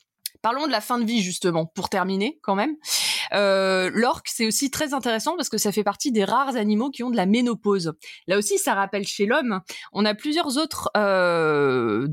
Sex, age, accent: female, 20-39, French